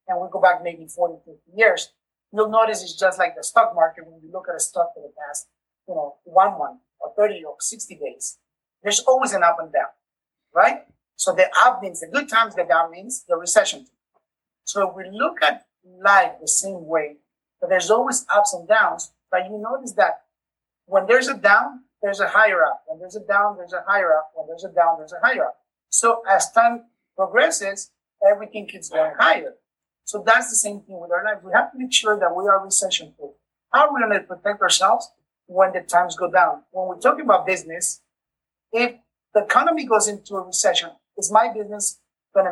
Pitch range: 175-220 Hz